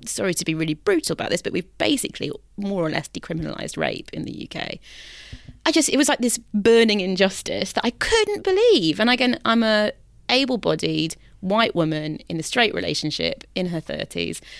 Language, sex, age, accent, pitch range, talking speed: English, female, 30-49, British, 160-210 Hz, 180 wpm